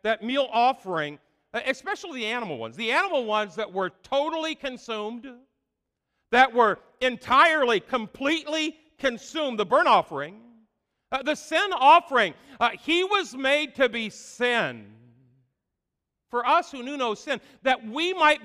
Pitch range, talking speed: 190-275 Hz, 135 wpm